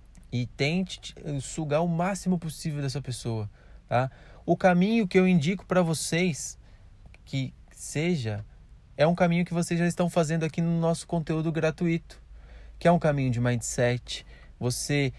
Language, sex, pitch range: Portuguese, male, 110-165 Hz